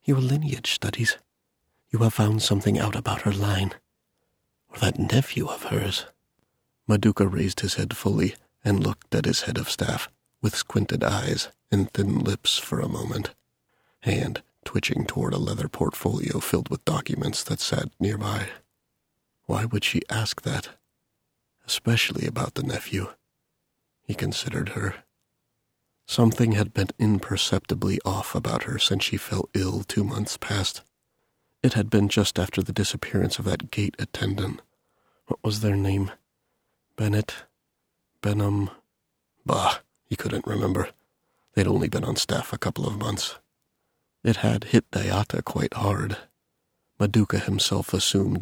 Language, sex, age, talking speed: English, male, 40-59, 140 wpm